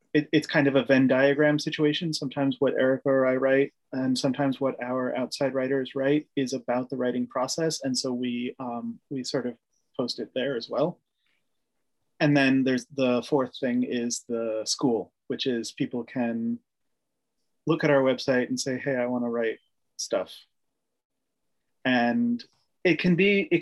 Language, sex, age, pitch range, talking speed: English, male, 30-49, 130-160 Hz, 170 wpm